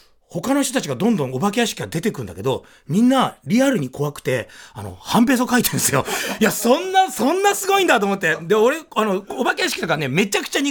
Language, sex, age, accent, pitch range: Japanese, male, 40-59, native, 140-230 Hz